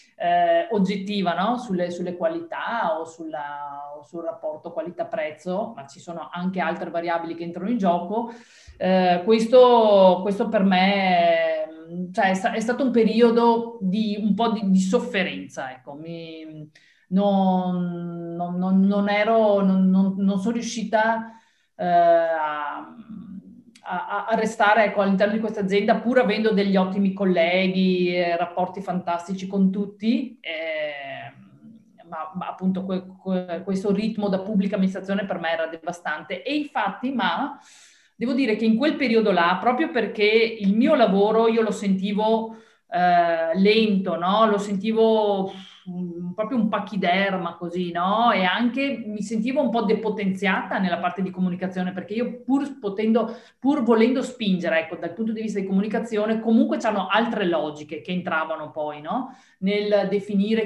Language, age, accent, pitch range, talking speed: Italian, 40-59, native, 180-225 Hz, 140 wpm